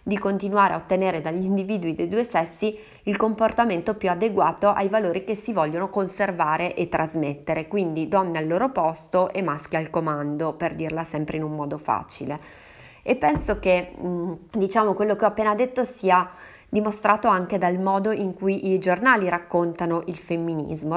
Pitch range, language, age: 165-195 Hz, Italian, 30-49